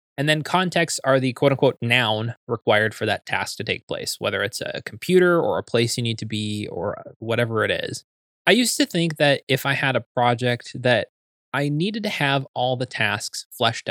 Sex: male